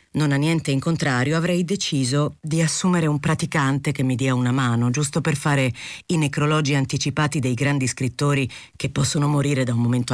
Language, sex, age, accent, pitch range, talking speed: Italian, female, 40-59, native, 130-160 Hz, 185 wpm